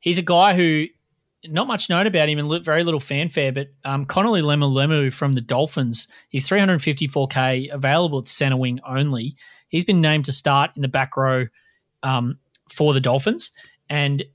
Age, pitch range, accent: 30-49, 135-160 Hz, Australian